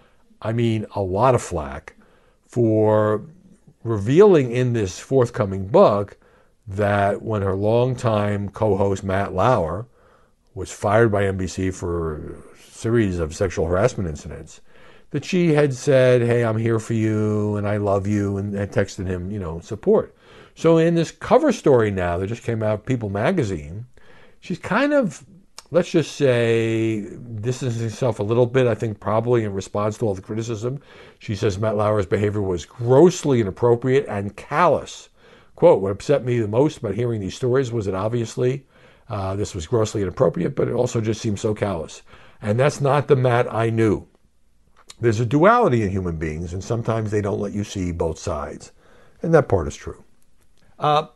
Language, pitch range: English, 100-125 Hz